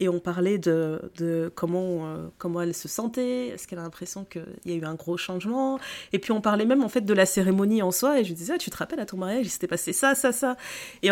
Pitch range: 185-245 Hz